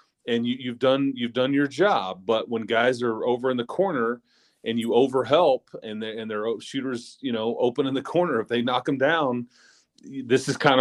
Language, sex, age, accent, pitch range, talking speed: English, male, 30-49, American, 115-140 Hz, 210 wpm